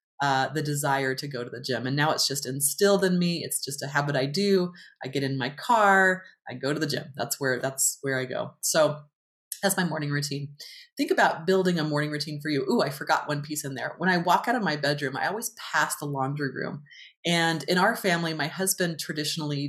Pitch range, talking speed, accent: 140-175 Hz, 235 wpm, American